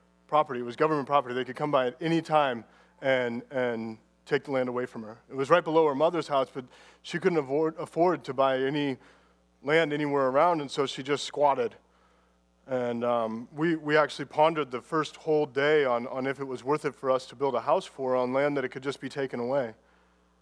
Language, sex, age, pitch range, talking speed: English, male, 30-49, 120-155 Hz, 225 wpm